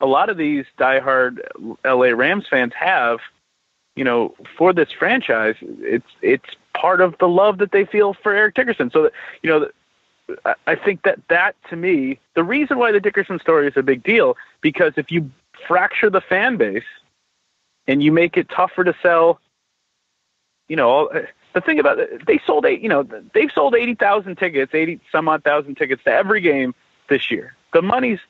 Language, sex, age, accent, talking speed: English, male, 30-49, American, 180 wpm